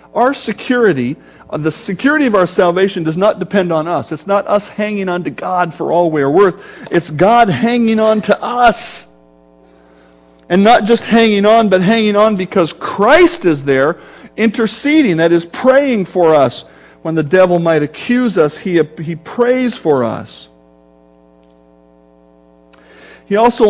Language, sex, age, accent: English, male, 50-69, American